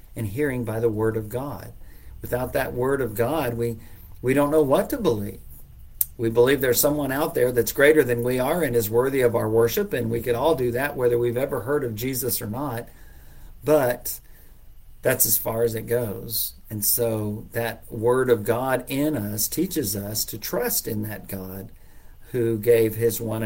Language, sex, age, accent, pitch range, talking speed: English, male, 50-69, American, 105-135 Hz, 195 wpm